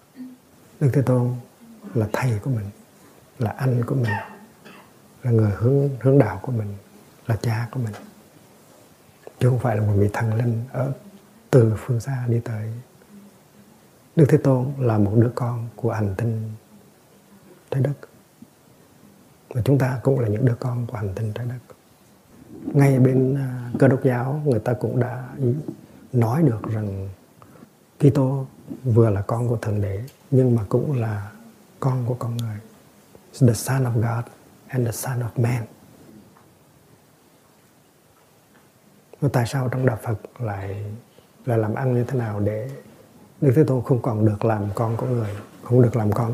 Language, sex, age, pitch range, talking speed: Vietnamese, male, 60-79, 110-130 Hz, 165 wpm